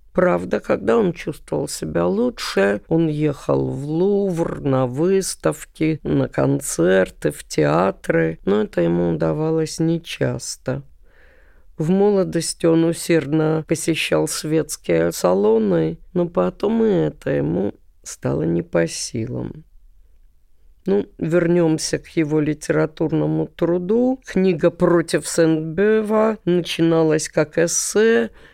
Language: Russian